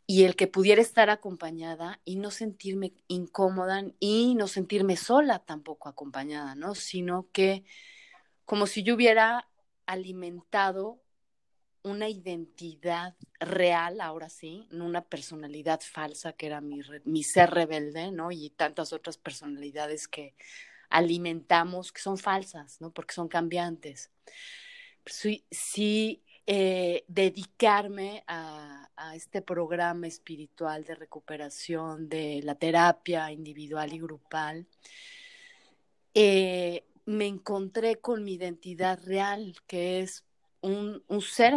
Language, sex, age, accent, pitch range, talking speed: Spanish, female, 30-49, Mexican, 165-205 Hz, 120 wpm